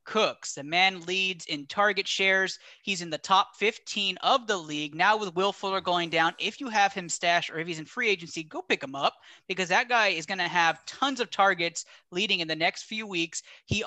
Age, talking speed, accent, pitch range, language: 30-49, 230 wpm, American, 165-205 Hz, English